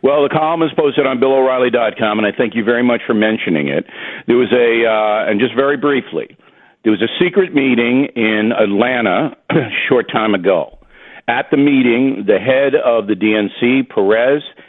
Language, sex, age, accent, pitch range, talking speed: English, male, 50-69, American, 115-155 Hz, 180 wpm